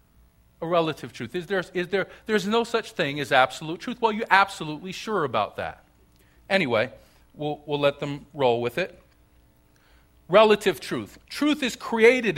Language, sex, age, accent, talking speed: English, male, 40-59, American, 160 wpm